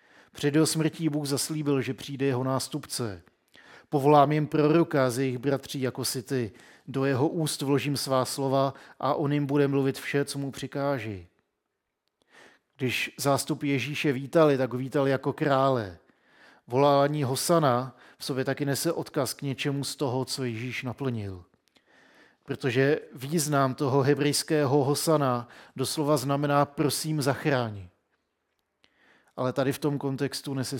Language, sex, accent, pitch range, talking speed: Czech, male, native, 130-145 Hz, 135 wpm